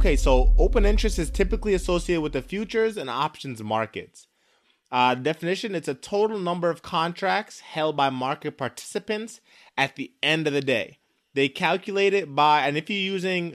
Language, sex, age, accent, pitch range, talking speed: English, male, 20-39, American, 125-170 Hz, 175 wpm